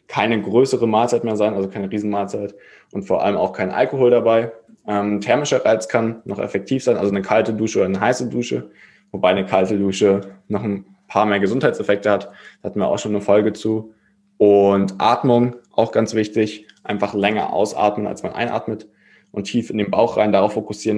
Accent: German